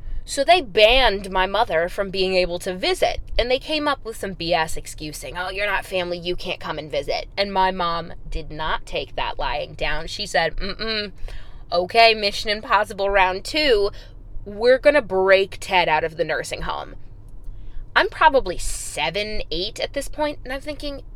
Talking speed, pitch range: 180 wpm, 165-235 Hz